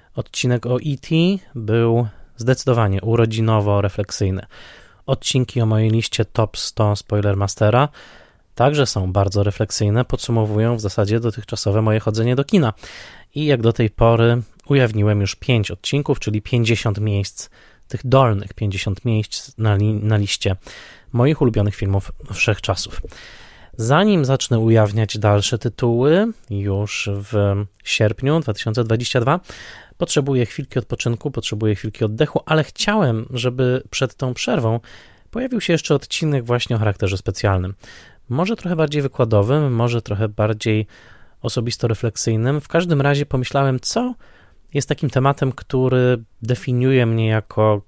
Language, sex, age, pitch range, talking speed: Polish, male, 20-39, 105-130 Hz, 125 wpm